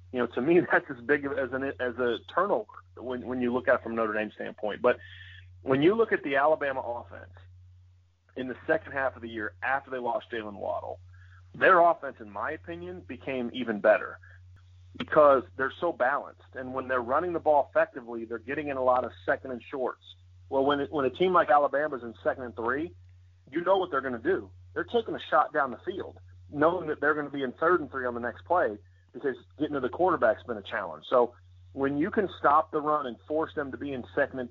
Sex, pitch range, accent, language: male, 95-140 Hz, American, English